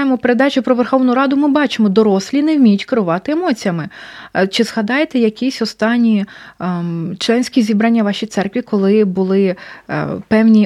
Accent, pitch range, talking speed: native, 195-235 Hz, 135 wpm